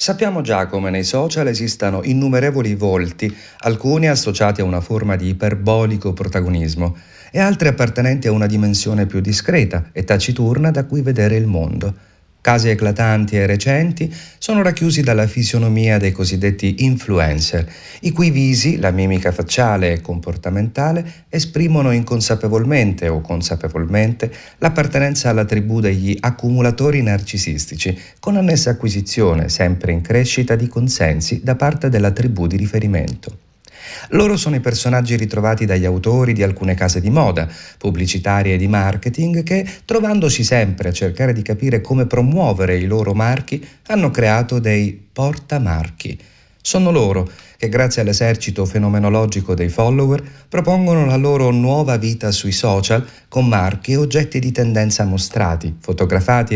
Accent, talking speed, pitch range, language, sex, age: native, 135 wpm, 95-130 Hz, Italian, male, 40-59